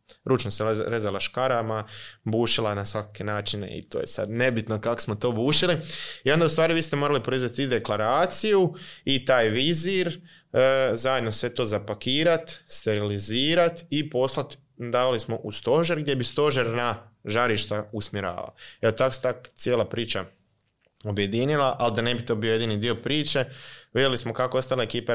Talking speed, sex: 155 wpm, male